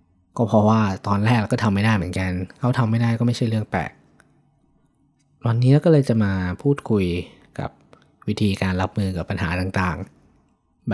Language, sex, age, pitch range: Thai, male, 20-39, 95-125 Hz